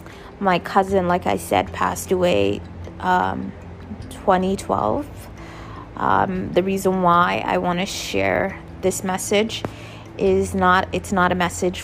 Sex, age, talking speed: female, 20-39, 120 wpm